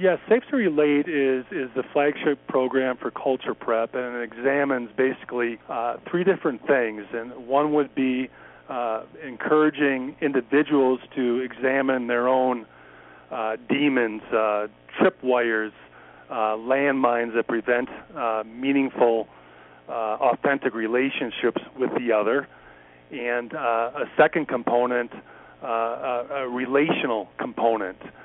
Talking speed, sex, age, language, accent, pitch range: 125 wpm, male, 40-59, English, American, 115-135 Hz